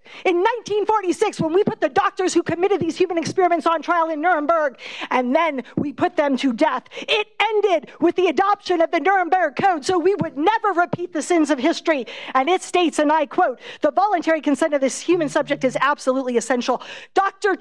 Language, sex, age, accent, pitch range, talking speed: English, female, 40-59, American, 310-380 Hz, 200 wpm